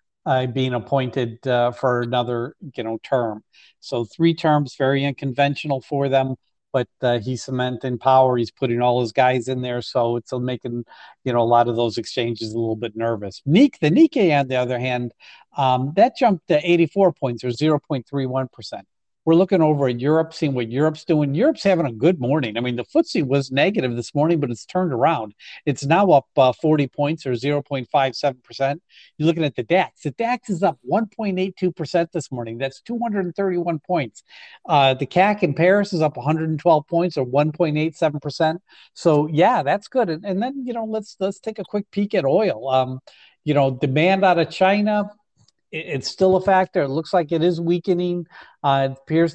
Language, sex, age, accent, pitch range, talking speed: English, male, 50-69, American, 125-165 Hz, 190 wpm